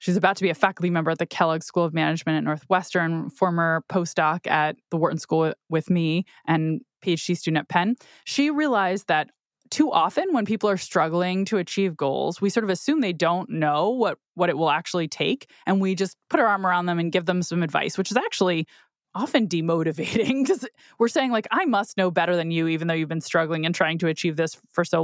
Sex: female